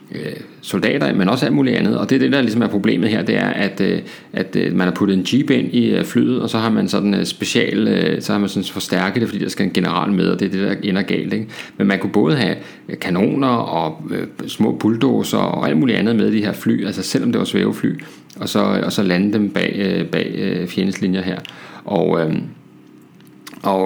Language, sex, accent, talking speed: Danish, male, native, 220 wpm